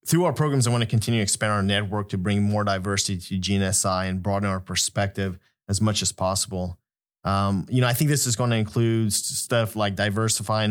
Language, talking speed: English, 215 wpm